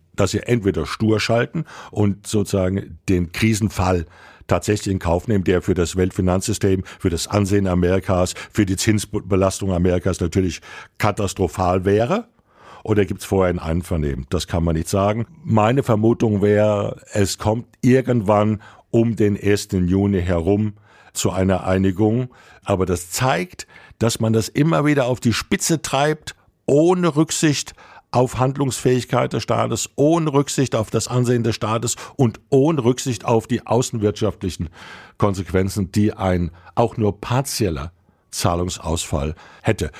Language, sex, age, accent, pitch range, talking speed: German, male, 60-79, German, 95-120 Hz, 140 wpm